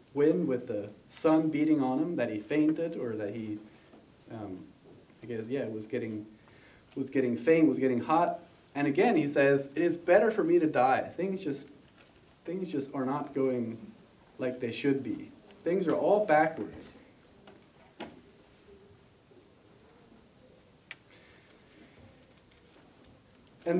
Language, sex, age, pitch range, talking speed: English, male, 30-49, 130-165 Hz, 130 wpm